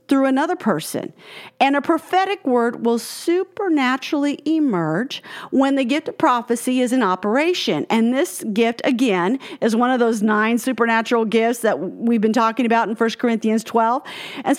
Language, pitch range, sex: English, 220-295 Hz, female